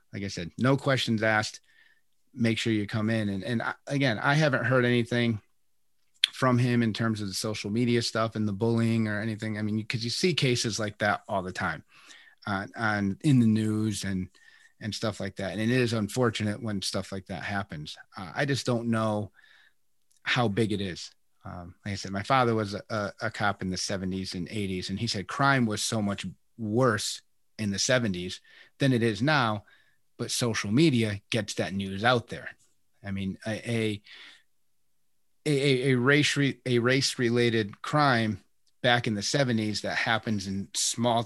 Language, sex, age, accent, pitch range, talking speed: English, male, 30-49, American, 100-120 Hz, 190 wpm